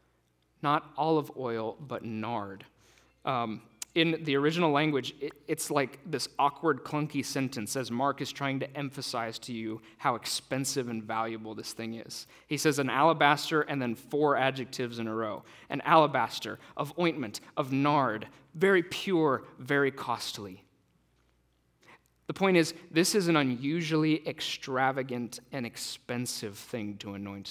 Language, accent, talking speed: English, American, 140 wpm